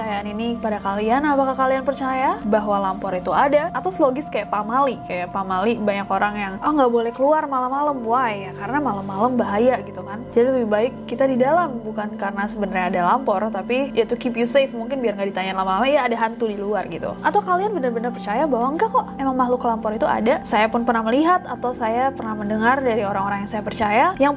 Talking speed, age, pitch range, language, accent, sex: 215 wpm, 20-39, 215-275 Hz, Indonesian, native, female